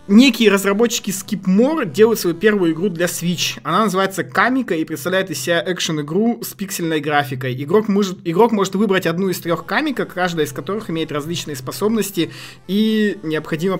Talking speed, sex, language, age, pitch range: 155 wpm, male, Russian, 20-39, 140-200 Hz